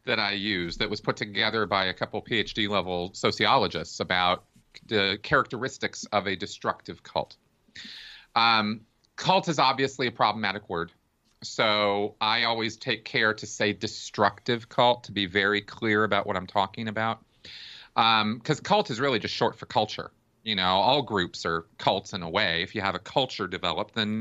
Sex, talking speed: male, 175 wpm